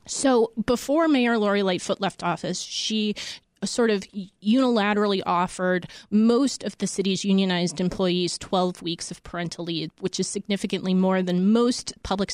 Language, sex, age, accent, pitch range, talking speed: English, female, 20-39, American, 180-210 Hz, 145 wpm